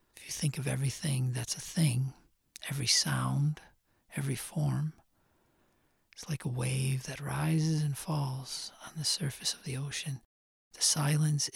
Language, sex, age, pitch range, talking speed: English, male, 40-59, 130-160 Hz, 135 wpm